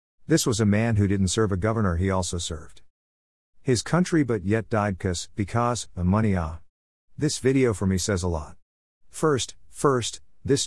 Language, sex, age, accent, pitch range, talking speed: English, male, 50-69, American, 85-115 Hz, 180 wpm